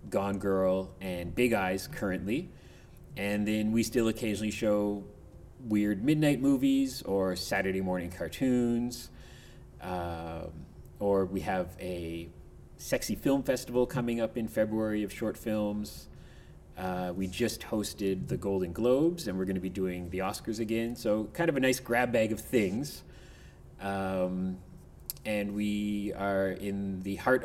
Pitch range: 95-115 Hz